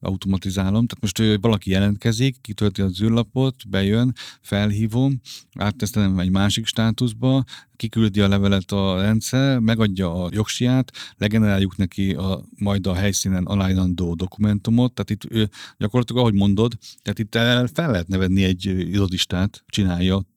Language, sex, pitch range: Hungarian, male, 95-110 Hz